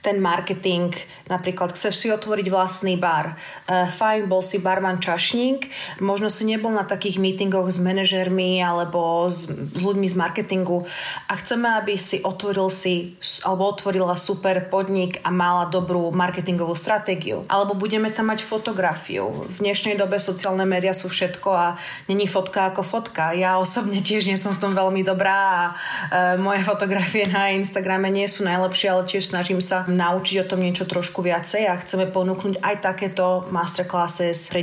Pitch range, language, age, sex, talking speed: 180-205 Hz, Slovak, 30-49, female, 165 wpm